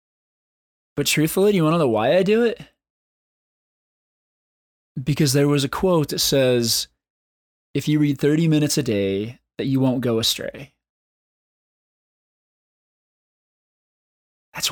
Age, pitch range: 20-39, 120-160 Hz